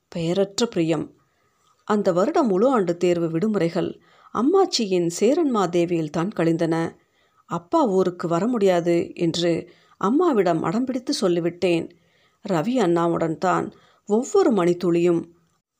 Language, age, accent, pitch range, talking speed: Tamil, 50-69, native, 170-210 Hz, 95 wpm